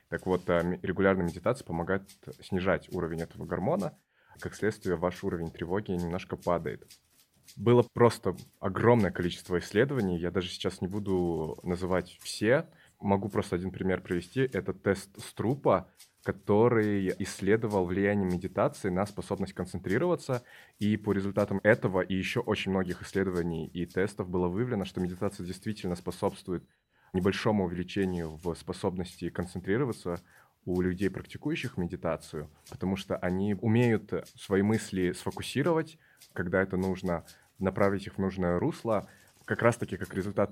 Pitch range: 90-105 Hz